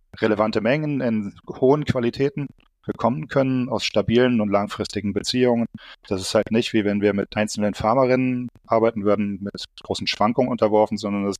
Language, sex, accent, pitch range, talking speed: German, male, German, 105-125 Hz, 160 wpm